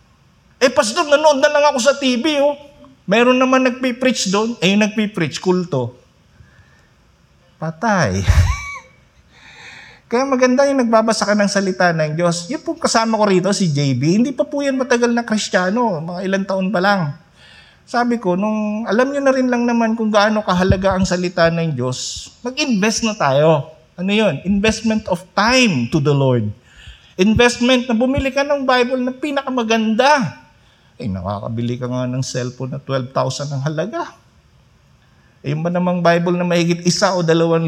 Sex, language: male, Filipino